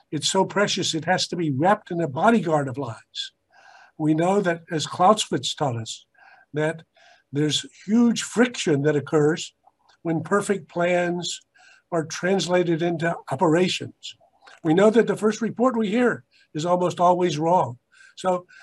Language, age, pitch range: English, 50-69, 155-190 Hz